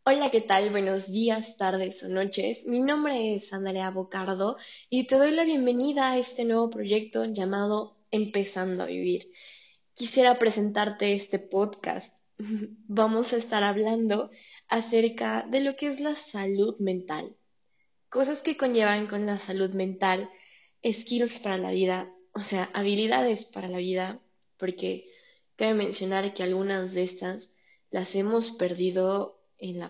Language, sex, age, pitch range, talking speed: Spanish, female, 10-29, 190-250 Hz, 145 wpm